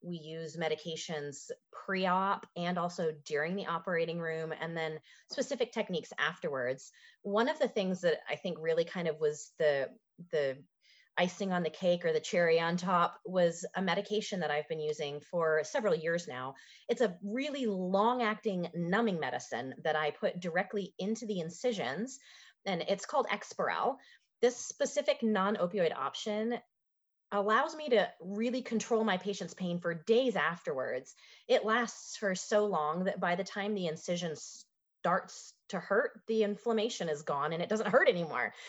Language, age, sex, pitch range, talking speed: English, 30-49, female, 165-215 Hz, 160 wpm